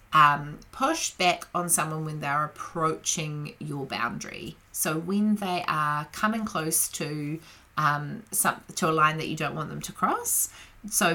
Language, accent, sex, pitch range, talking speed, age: English, Australian, female, 155-195 Hz, 165 wpm, 30-49